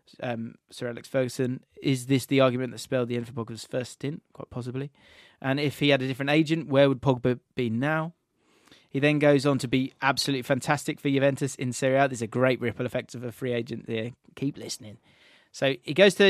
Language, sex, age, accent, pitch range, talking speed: English, male, 20-39, British, 125-145 Hz, 215 wpm